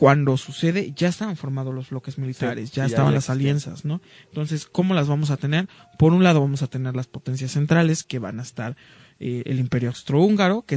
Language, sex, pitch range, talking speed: Spanish, male, 130-155 Hz, 205 wpm